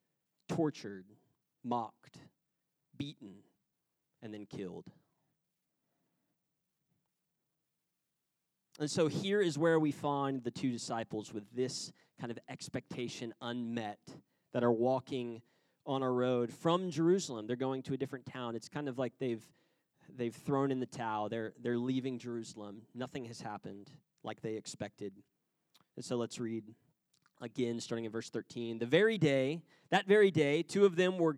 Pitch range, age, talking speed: 120-165 Hz, 30-49, 145 wpm